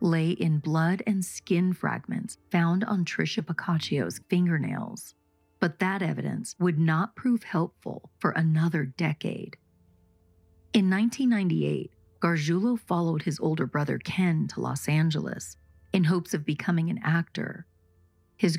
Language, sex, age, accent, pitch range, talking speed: English, female, 40-59, American, 140-185 Hz, 125 wpm